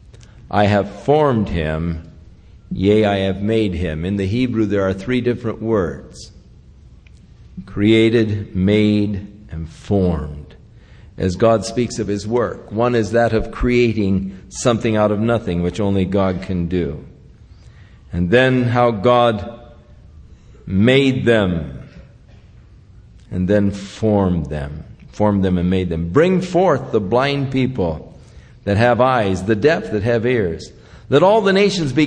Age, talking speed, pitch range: 50-69, 140 wpm, 100-165 Hz